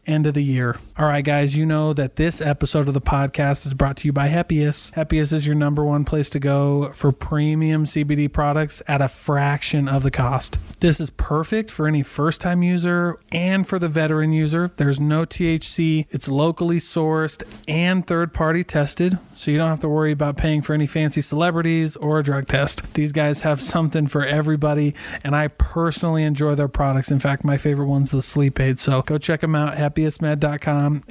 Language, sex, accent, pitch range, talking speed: English, male, American, 140-155 Hz, 200 wpm